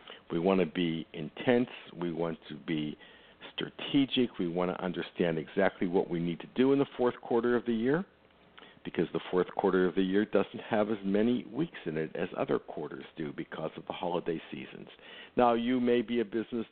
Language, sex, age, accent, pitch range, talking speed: English, male, 60-79, American, 80-120 Hz, 200 wpm